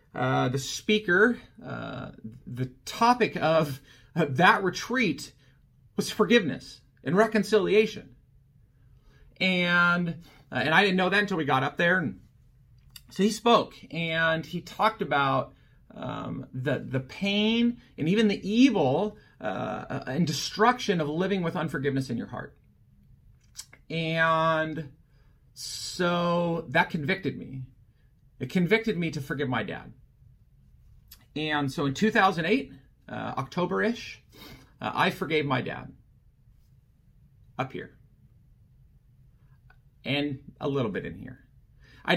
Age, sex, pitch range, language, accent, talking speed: 40-59, male, 130-185 Hz, English, American, 120 wpm